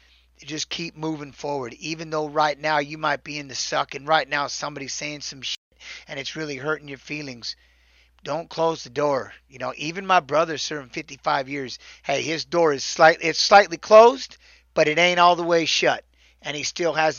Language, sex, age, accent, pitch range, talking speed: English, male, 30-49, American, 135-155 Hz, 205 wpm